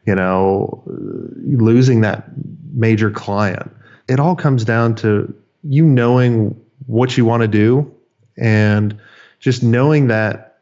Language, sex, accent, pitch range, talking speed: English, male, American, 115-140 Hz, 125 wpm